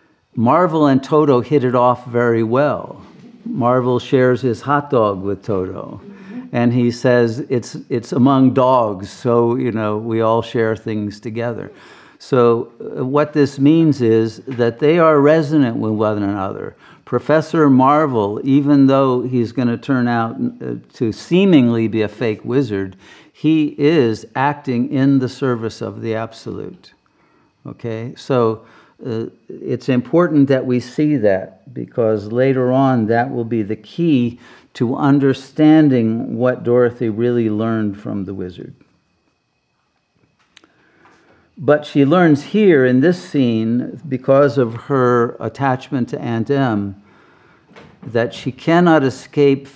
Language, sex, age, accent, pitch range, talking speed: English, male, 50-69, American, 115-140 Hz, 135 wpm